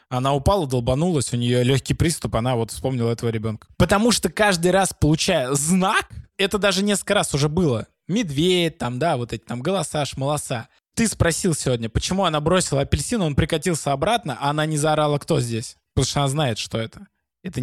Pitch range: 130-170 Hz